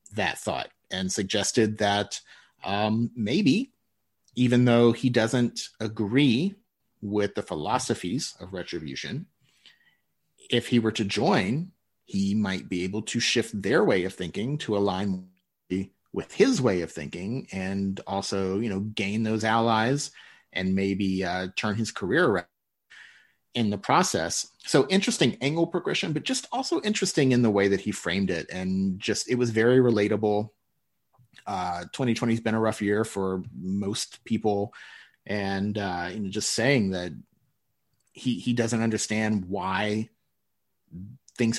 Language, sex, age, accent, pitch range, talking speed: English, male, 30-49, American, 100-125 Hz, 145 wpm